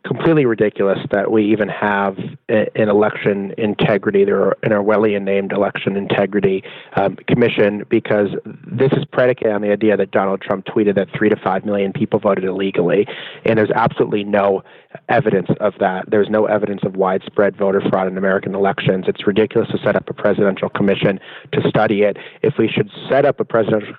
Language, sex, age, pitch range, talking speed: English, male, 30-49, 100-110 Hz, 175 wpm